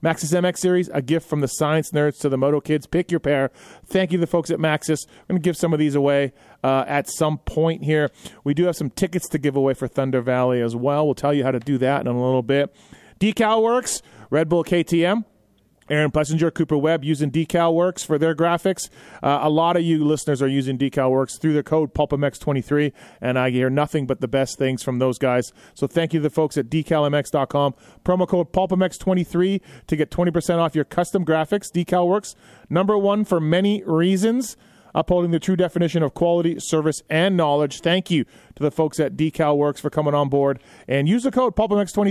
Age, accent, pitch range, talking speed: 30-49, American, 145-175 Hz, 210 wpm